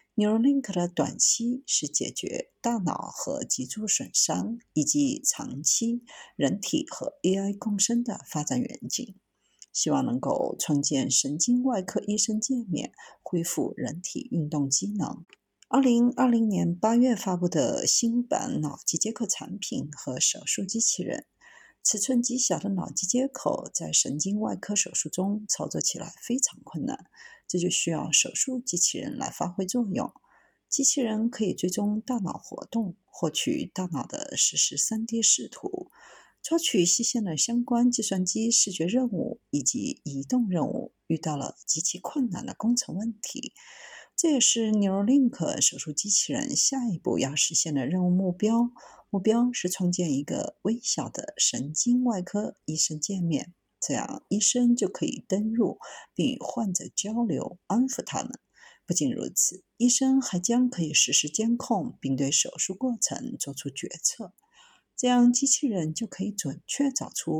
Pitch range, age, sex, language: 175-245 Hz, 50-69, female, Chinese